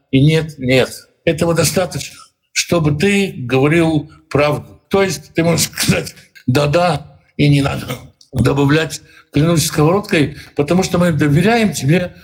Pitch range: 140-175 Hz